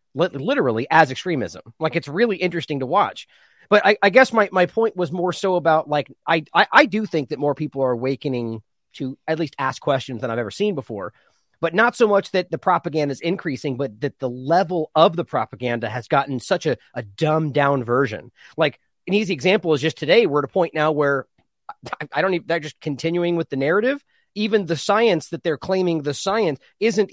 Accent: American